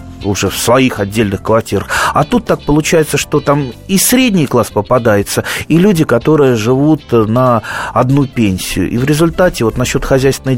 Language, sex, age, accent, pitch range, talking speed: Russian, male, 30-49, native, 110-145 Hz, 160 wpm